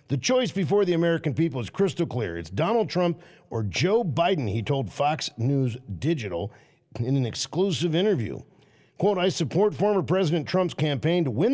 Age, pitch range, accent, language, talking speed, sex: 50-69, 125-180 Hz, American, English, 170 wpm, male